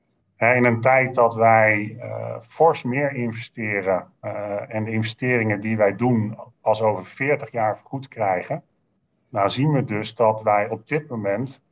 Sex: male